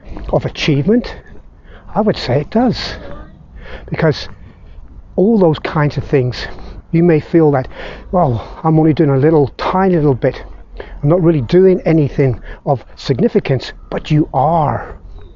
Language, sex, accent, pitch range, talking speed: English, male, British, 130-165 Hz, 140 wpm